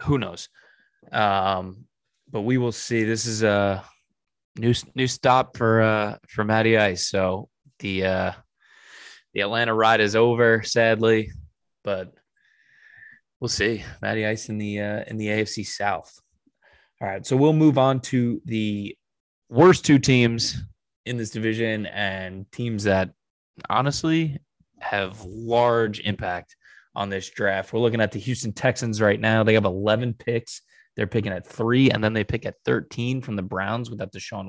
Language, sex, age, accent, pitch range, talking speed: English, male, 20-39, American, 95-120 Hz, 160 wpm